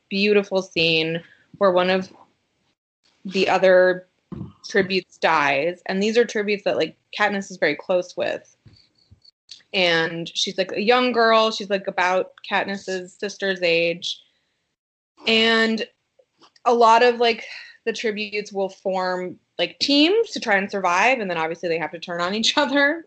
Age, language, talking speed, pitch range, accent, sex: 20-39, English, 150 wpm, 175-225 Hz, American, female